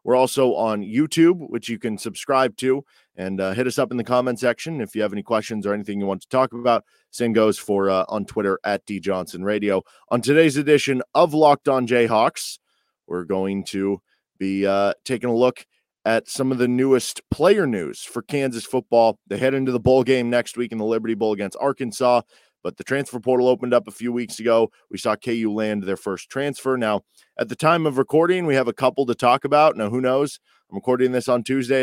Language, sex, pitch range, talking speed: English, male, 105-130 Hz, 220 wpm